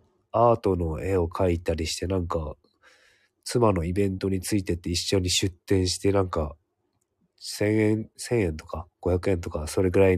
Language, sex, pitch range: Japanese, male, 85-105 Hz